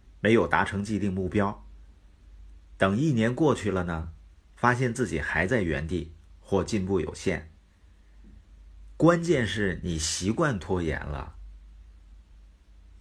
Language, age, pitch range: Chinese, 50-69, 75-110 Hz